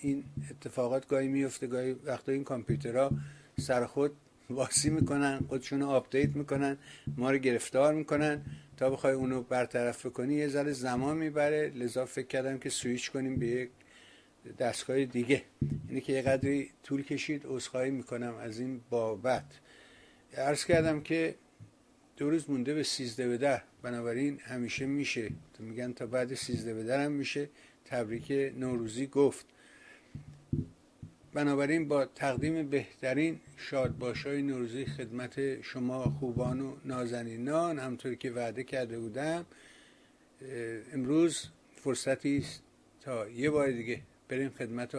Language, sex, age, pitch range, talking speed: Persian, male, 60-79, 125-145 Hz, 130 wpm